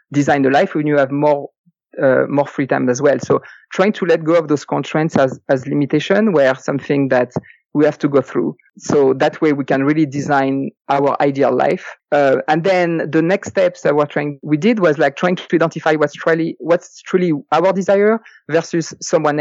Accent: French